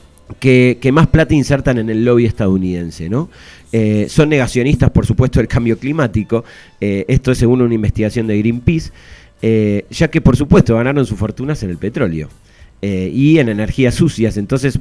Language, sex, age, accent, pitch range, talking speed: Spanish, male, 30-49, Argentinian, 110-145 Hz, 175 wpm